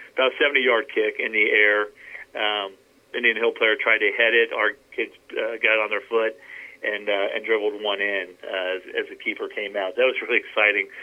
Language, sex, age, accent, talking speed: English, male, 50-69, American, 210 wpm